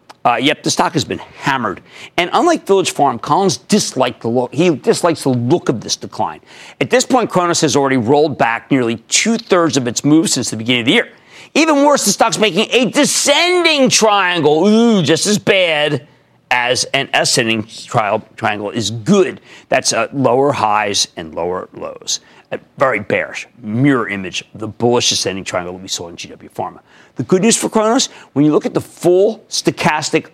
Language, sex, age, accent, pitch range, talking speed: English, male, 40-59, American, 130-205 Hz, 185 wpm